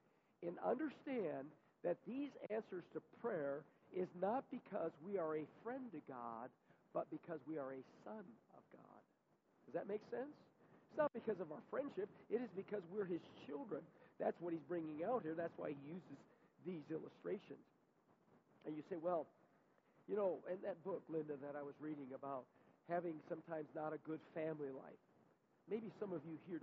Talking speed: 180 wpm